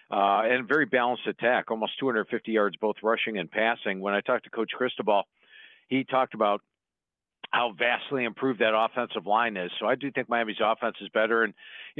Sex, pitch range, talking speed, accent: male, 105-135 Hz, 190 wpm, American